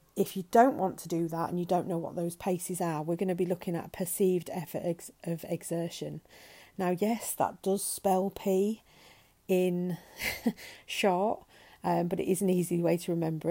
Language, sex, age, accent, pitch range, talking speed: English, female, 40-59, British, 165-185 Hz, 185 wpm